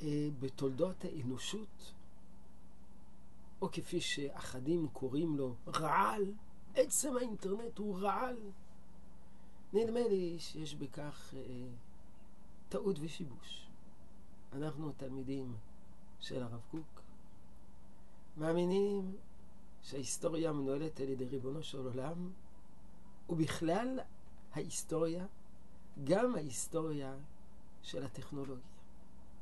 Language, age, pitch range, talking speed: Hebrew, 50-69, 135-195 Hz, 75 wpm